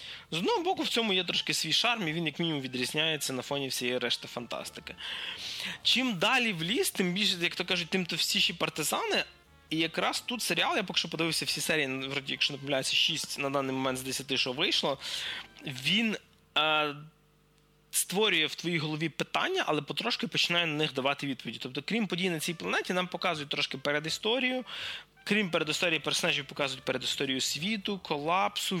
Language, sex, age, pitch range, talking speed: Ukrainian, male, 20-39, 130-170 Hz, 175 wpm